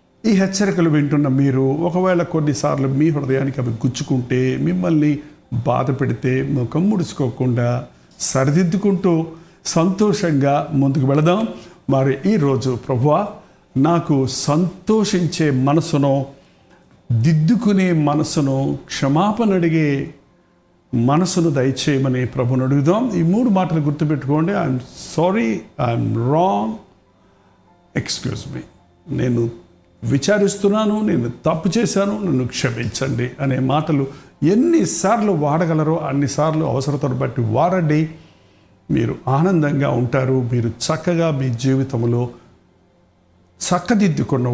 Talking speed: 90 wpm